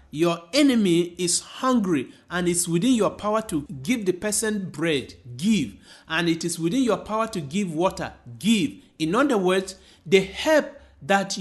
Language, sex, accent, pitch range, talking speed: English, male, Nigerian, 165-230 Hz, 165 wpm